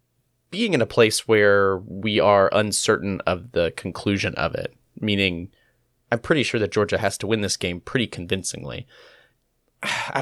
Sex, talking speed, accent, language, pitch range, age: male, 160 wpm, American, English, 95-130 Hz, 20-39